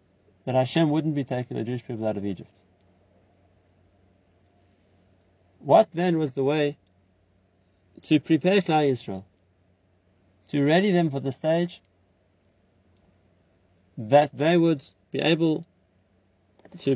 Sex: male